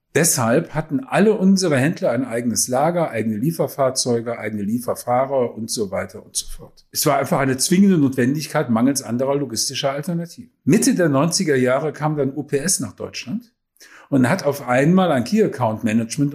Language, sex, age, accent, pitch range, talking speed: German, male, 50-69, German, 125-165 Hz, 160 wpm